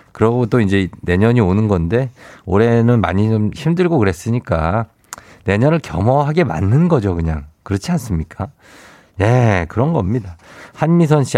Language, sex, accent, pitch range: Korean, male, native, 95-130 Hz